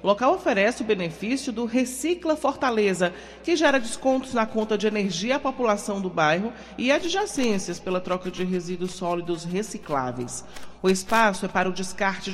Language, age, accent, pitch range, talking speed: Portuguese, 40-59, Brazilian, 185-245 Hz, 160 wpm